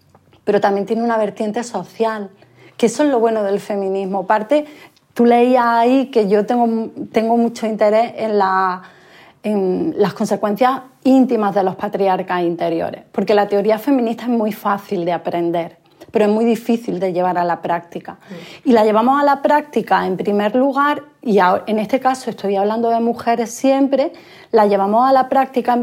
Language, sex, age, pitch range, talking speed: Spanish, female, 30-49, 205-250 Hz, 175 wpm